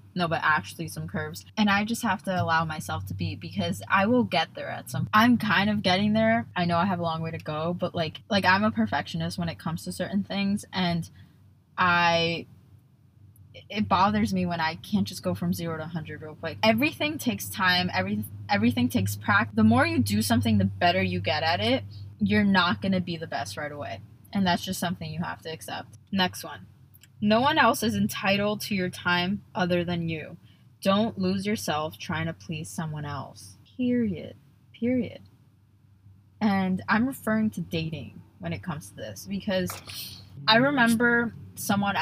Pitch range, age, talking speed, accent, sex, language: 140-205 Hz, 20-39, 195 wpm, American, female, English